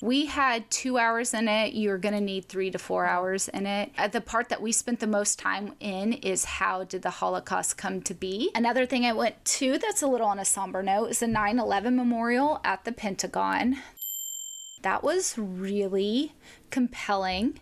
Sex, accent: female, American